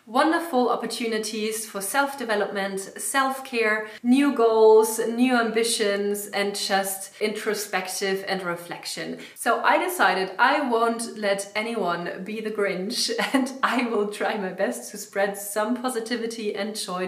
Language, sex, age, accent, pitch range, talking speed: English, female, 30-49, German, 195-235 Hz, 125 wpm